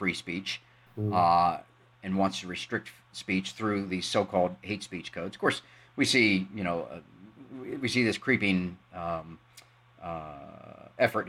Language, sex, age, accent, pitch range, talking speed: English, male, 40-59, American, 95-135 Hz, 150 wpm